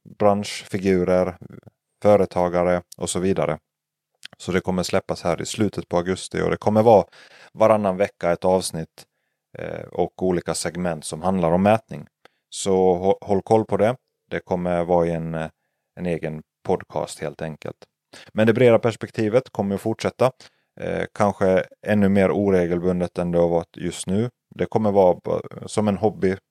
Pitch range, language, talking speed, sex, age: 85-100 Hz, Swedish, 150 wpm, male, 30-49